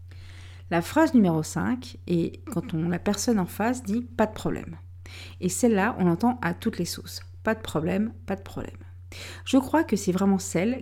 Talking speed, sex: 190 wpm, female